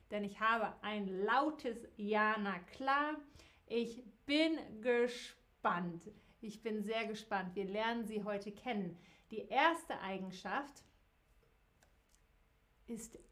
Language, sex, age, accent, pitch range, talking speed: German, female, 50-69, German, 200-250 Hz, 105 wpm